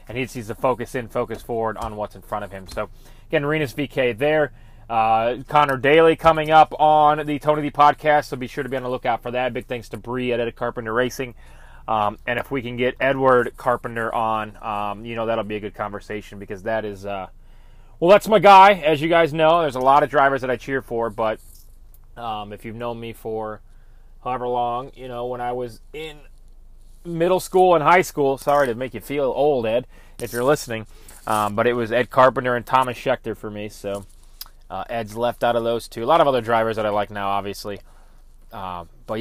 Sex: male